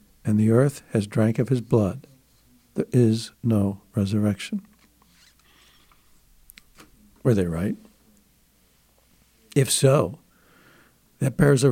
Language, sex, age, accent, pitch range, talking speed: English, male, 60-79, American, 105-130 Hz, 100 wpm